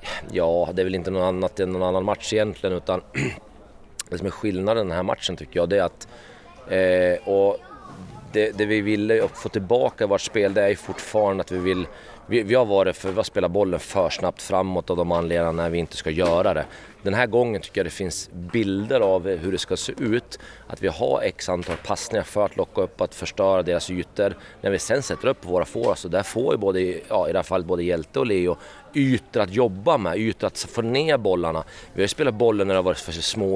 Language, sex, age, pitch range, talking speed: Swedish, male, 30-49, 90-115 Hz, 230 wpm